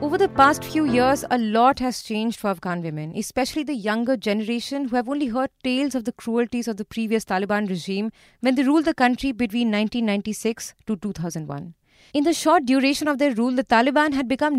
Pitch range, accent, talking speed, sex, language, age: 220-280 Hz, Indian, 200 wpm, female, English, 20-39